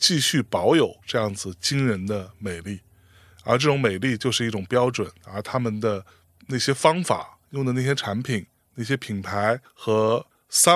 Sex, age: male, 20-39